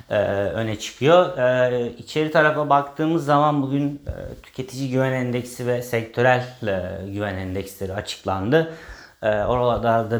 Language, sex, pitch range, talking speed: Turkish, male, 105-130 Hz, 100 wpm